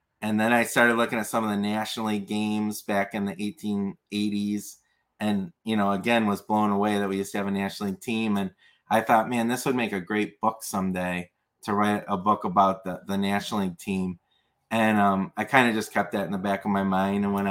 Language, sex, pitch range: English, male, 100-115 Hz